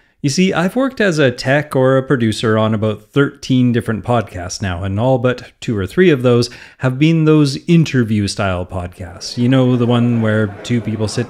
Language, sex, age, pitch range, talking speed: English, male, 30-49, 105-140 Hz, 195 wpm